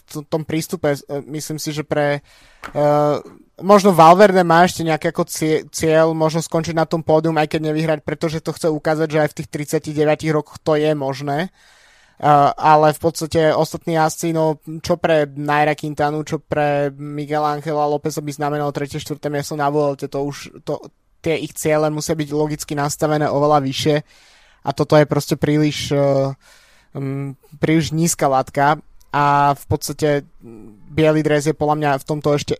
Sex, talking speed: male, 170 wpm